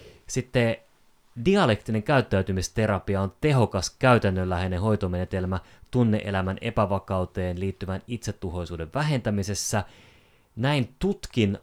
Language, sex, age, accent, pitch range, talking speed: Finnish, male, 30-49, native, 95-120 Hz, 70 wpm